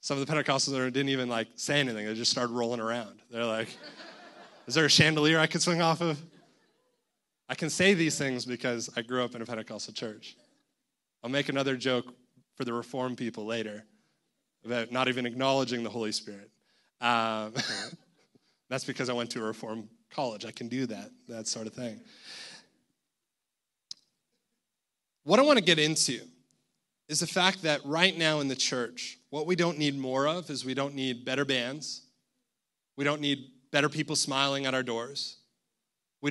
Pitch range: 130-200 Hz